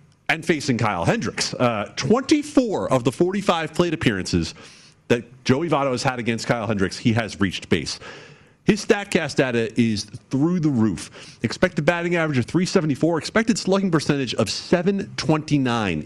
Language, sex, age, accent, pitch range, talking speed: English, male, 40-59, American, 110-160 Hz, 150 wpm